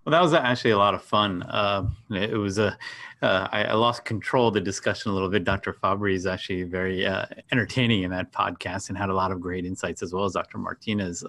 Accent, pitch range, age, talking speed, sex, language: American, 95-110 Hz, 30-49, 235 wpm, male, English